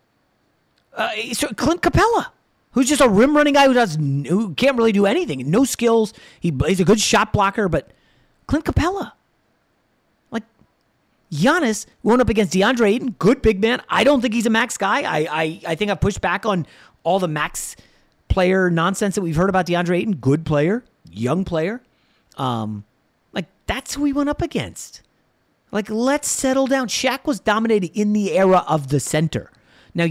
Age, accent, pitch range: 30-49, American, 140-220 Hz